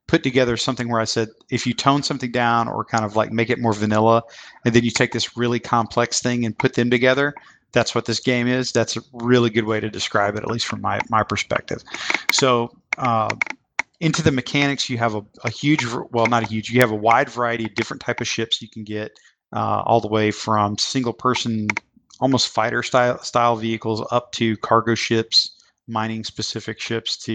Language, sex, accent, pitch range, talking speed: English, male, American, 110-125 Hz, 215 wpm